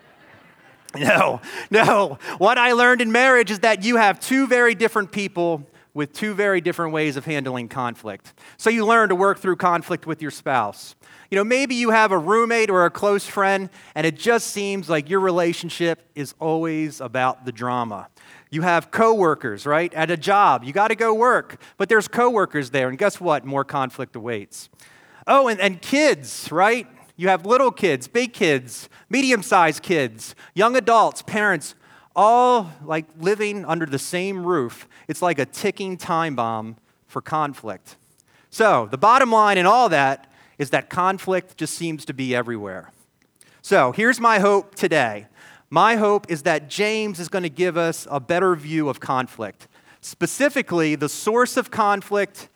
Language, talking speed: English, 170 wpm